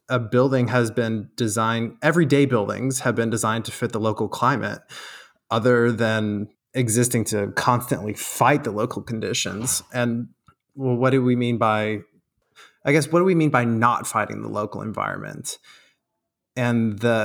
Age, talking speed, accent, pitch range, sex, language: 20-39, 155 wpm, American, 110-130 Hz, male, English